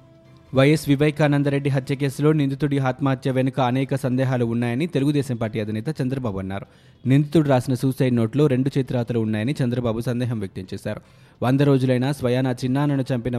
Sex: male